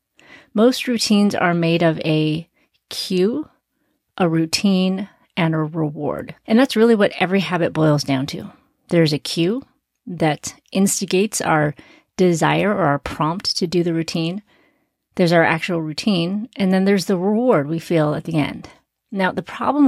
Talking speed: 155 wpm